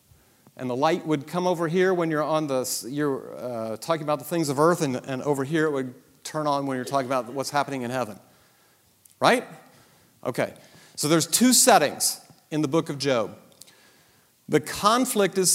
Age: 40-59